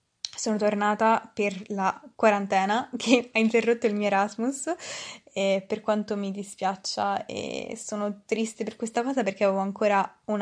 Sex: female